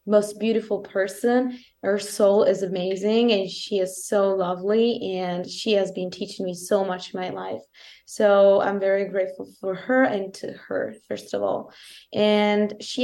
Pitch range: 185-210 Hz